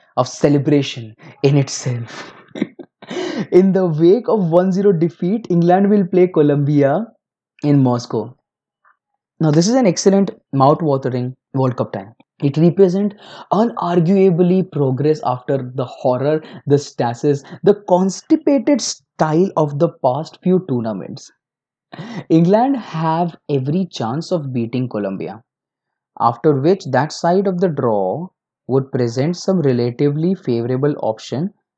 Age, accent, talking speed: 20-39, Indian, 120 wpm